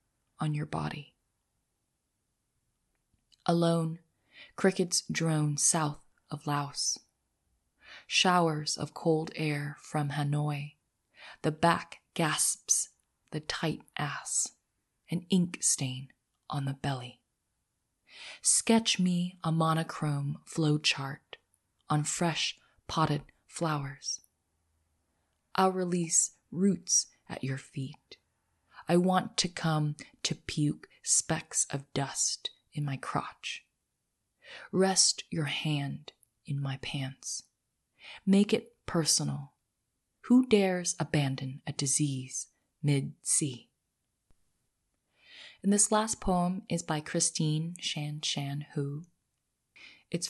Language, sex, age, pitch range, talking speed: English, female, 20-39, 140-170 Hz, 95 wpm